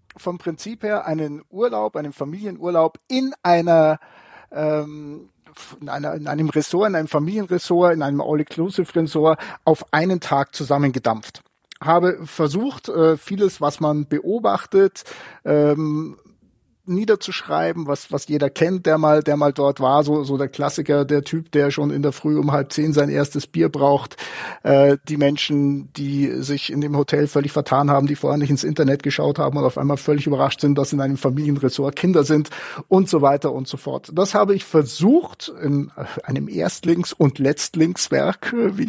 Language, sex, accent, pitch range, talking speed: German, male, German, 145-180 Hz, 165 wpm